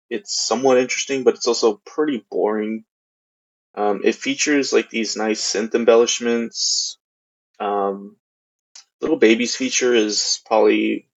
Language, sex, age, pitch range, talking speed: English, male, 20-39, 105-150 Hz, 120 wpm